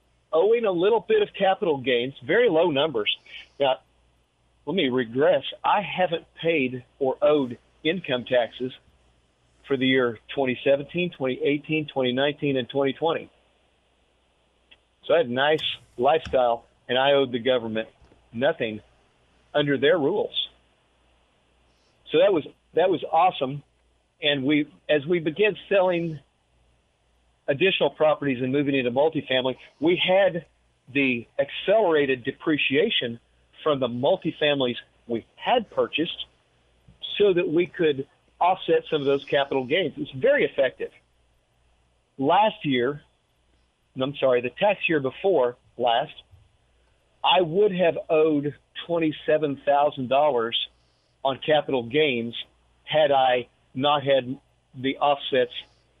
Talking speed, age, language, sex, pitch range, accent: 120 wpm, 50-69, English, male, 120-155 Hz, American